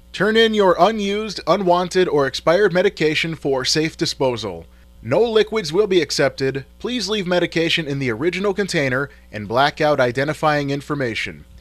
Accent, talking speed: American, 145 wpm